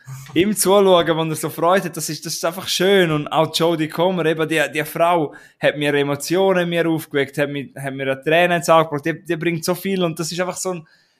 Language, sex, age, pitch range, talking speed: German, male, 20-39, 145-175 Hz, 215 wpm